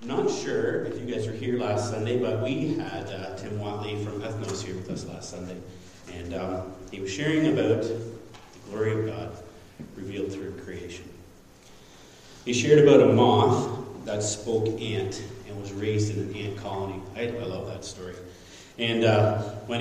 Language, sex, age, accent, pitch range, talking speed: English, male, 30-49, American, 95-115 Hz, 175 wpm